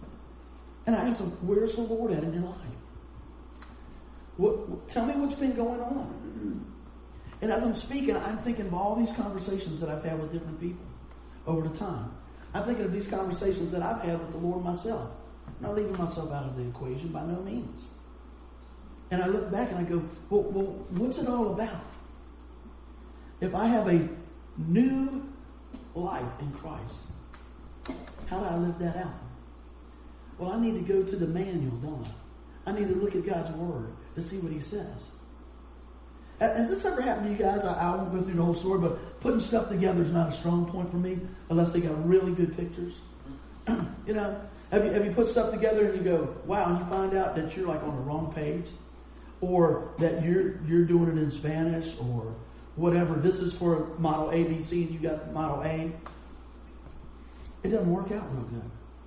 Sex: male